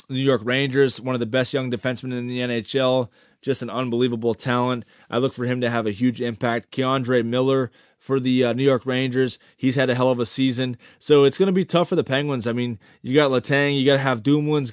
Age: 20-39